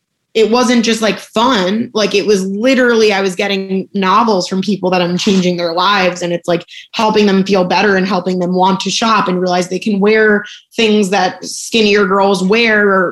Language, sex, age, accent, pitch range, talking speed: English, female, 20-39, American, 180-205 Hz, 200 wpm